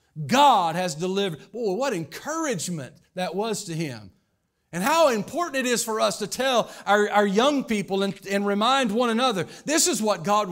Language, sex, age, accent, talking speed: English, male, 50-69, American, 185 wpm